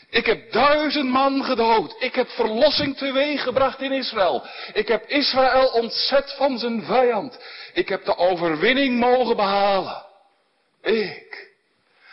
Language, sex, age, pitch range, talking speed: Dutch, male, 60-79, 185-300 Hz, 130 wpm